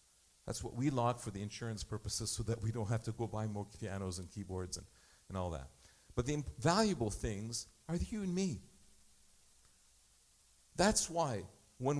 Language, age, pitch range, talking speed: English, 50-69, 95-145 Hz, 175 wpm